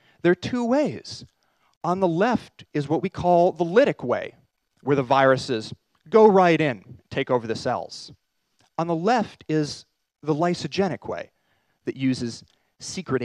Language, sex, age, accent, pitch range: Korean, male, 30-49, American, 145-215 Hz